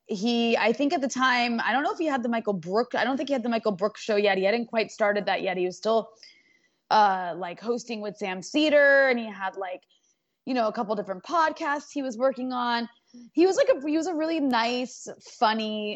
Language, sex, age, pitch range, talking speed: English, female, 20-39, 205-270 Hz, 240 wpm